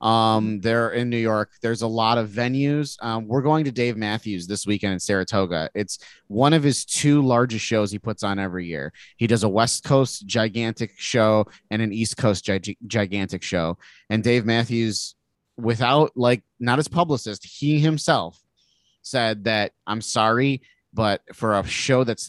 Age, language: 30-49, English